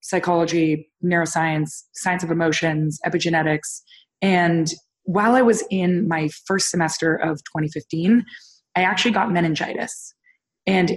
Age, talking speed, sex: 20-39, 115 wpm, female